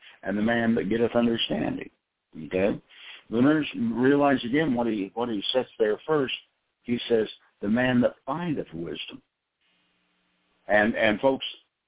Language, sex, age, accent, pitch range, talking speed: English, male, 60-79, American, 95-135 Hz, 140 wpm